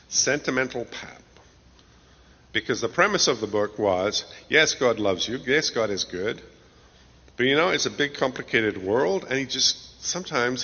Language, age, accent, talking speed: English, 50-69, American, 165 wpm